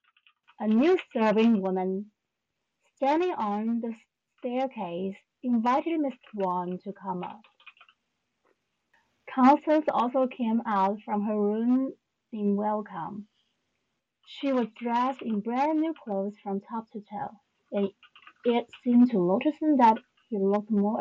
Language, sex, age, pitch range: Chinese, female, 30-49, 195-270 Hz